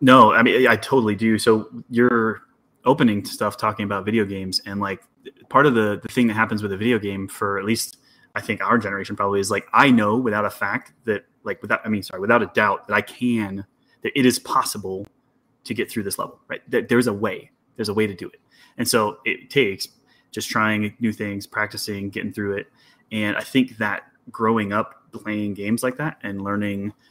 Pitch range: 100-115 Hz